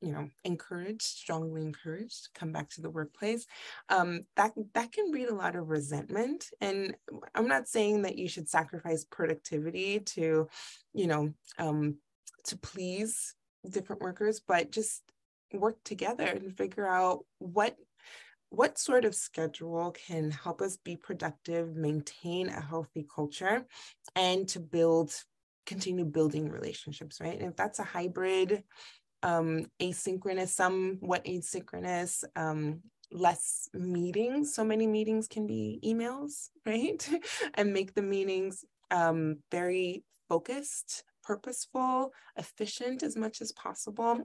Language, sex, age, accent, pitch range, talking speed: English, female, 20-39, American, 160-210 Hz, 130 wpm